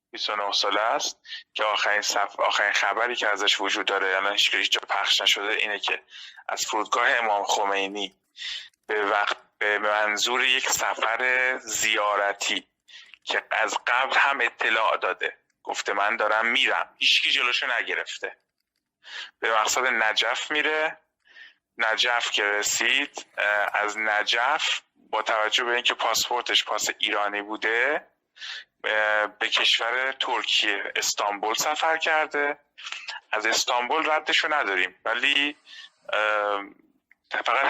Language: Persian